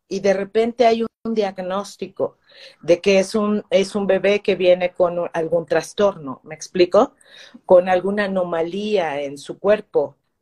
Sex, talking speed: female, 155 wpm